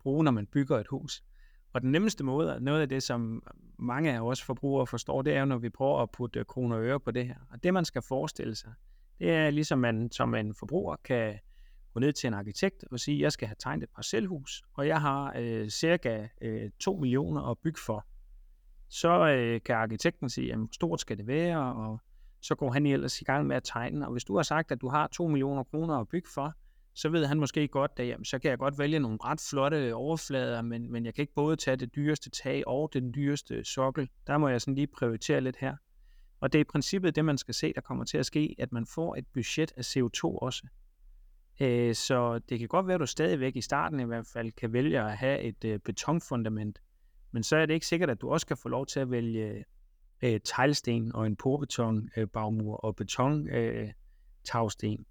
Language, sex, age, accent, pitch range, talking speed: Danish, male, 30-49, native, 115-145 Hz, 230 wpm